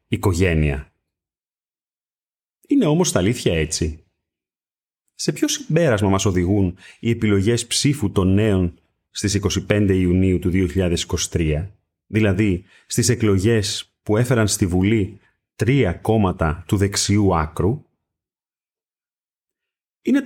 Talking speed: 105 wpm